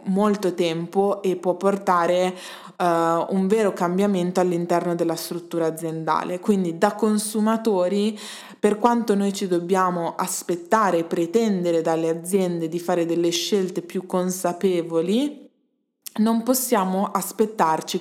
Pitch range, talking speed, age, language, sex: 170-200 Hz, 115 wpm, 20-39, Italian, female